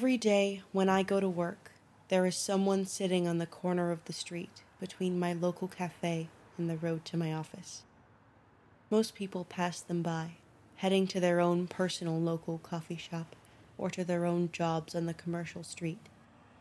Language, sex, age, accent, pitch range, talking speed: English, female, 20-39, American, 160-185 Hz, 175 wpm